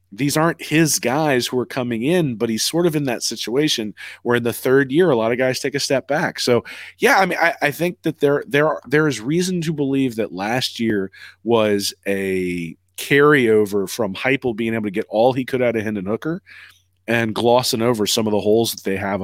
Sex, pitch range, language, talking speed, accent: male, 105-135 Hz, English, 225 wpm, American